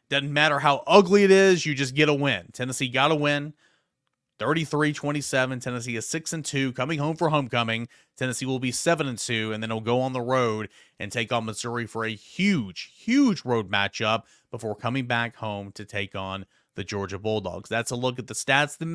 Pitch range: 125-170 Hz